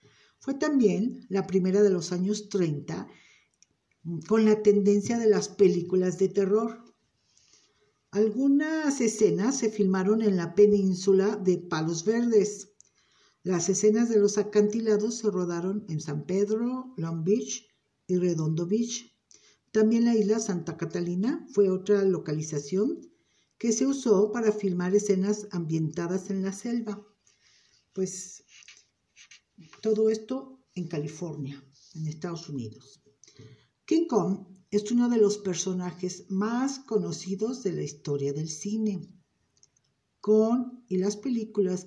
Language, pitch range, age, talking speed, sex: Spanish, 180-220 Hz, 50-69, 120 wpm, female